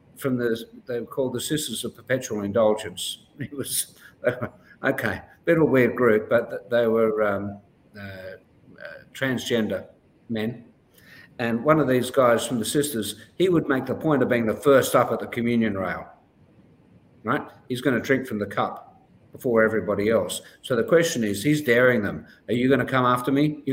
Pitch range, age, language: 110-130 Hz, 50-69, English